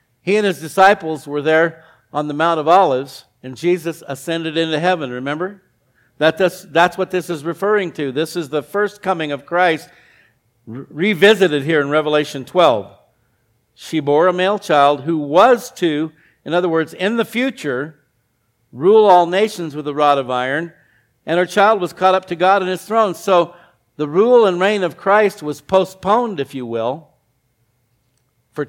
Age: 50-69